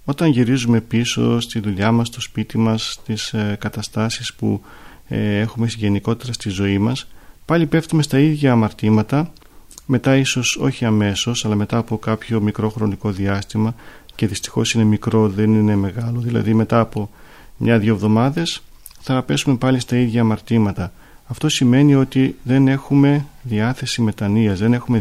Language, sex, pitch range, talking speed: Greek, male, 110-130 Hz, 150 wpm